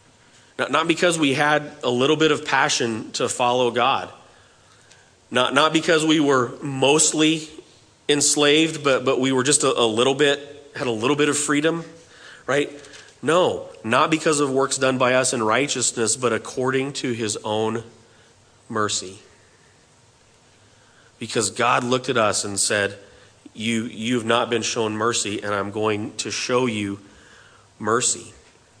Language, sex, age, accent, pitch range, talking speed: English, male, 40-59, American, 115-135 Hz, 150 wpm